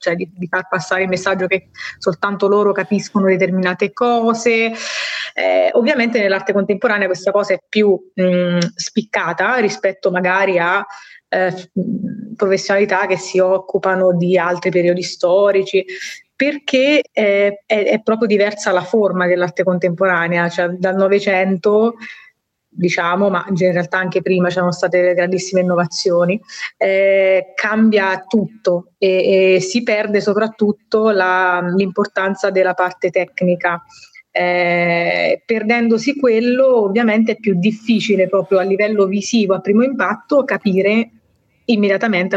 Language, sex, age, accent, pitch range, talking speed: Italian, female, 20-39, native, 185-210 Hz, 120 wpm